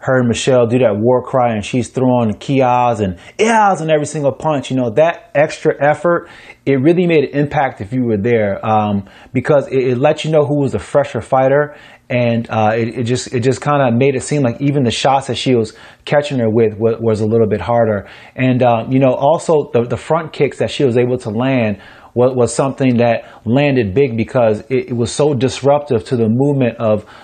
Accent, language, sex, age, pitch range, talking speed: American, English, male, 30-49, 110-135 Hz, 225 wpm